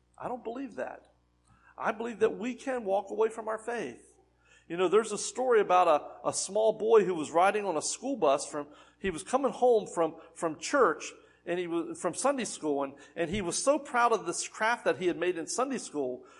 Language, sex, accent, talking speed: English, male, American, 225 wpm